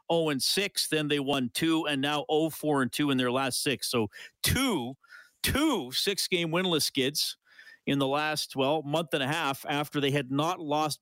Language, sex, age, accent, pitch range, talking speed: English, male, 40-59, American, 130-165 Hz, 190 wpm